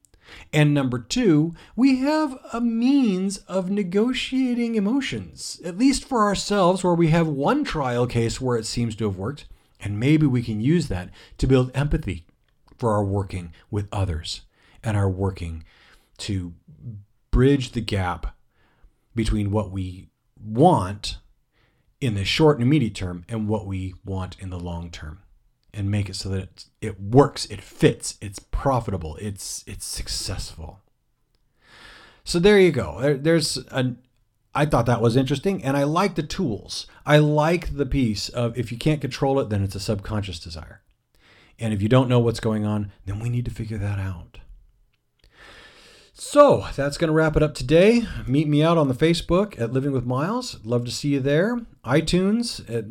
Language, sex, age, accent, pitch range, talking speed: English, male, 40-59, American, 100-155 Hz, 170 wpm